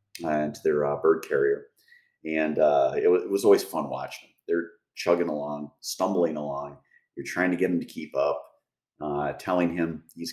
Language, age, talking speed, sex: English, 40-59, 190 wpm, male